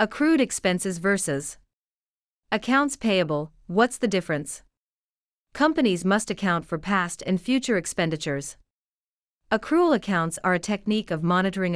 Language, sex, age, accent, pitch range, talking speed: English, female, 40-59, American, 150-220 Hz, 115 wpm